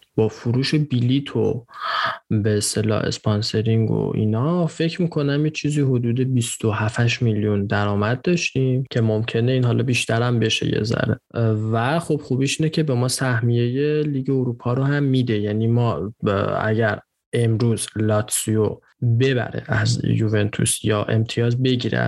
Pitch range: 110-135 Hz